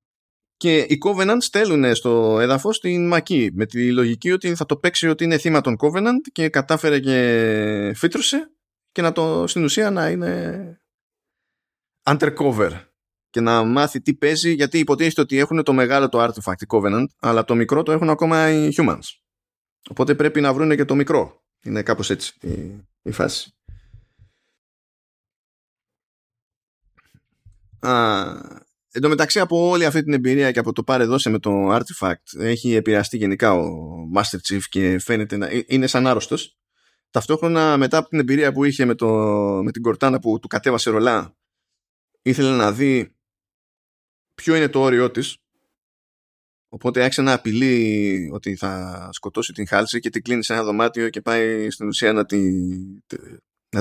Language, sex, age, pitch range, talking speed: Greek, male, 20-39, 105-150 Hz, 155 wpm